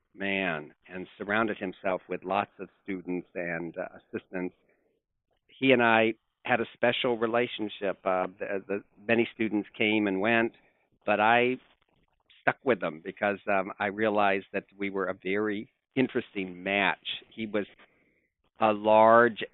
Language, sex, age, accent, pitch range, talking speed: English, male, 50-69, American, 95-110 Hz, 140 wpm